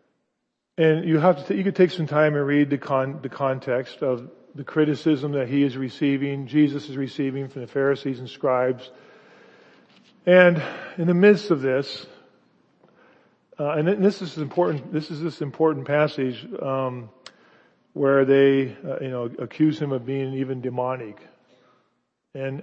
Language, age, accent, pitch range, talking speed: English, 40-59, American, 135-180 Hz, 160 wpm